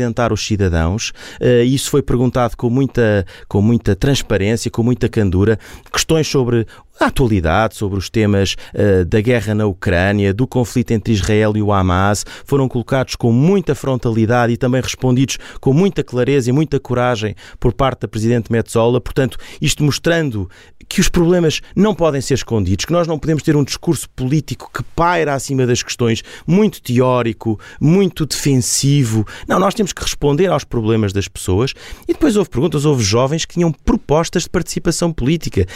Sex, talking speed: male, 165 wpm